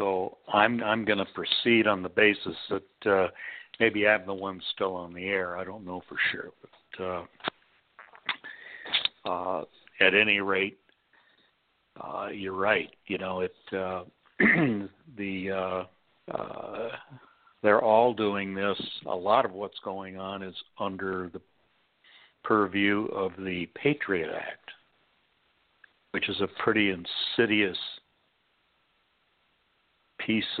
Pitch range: 95-105 Hz